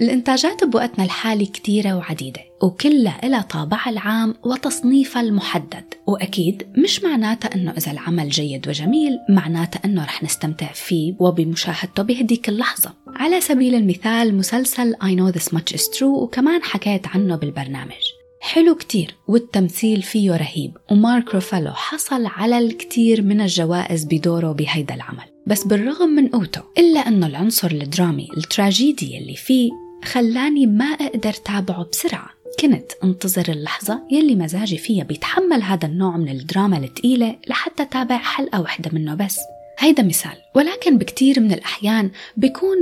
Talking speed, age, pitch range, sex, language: 135 wpm, 20-39, 170-250 Hz, female, Arabic